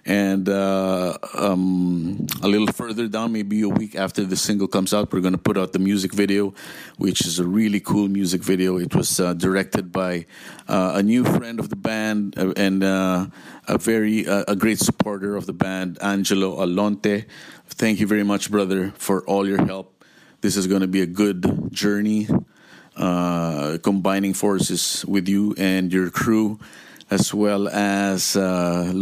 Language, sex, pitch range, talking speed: English, male, 95-105 Hz, 175 wpm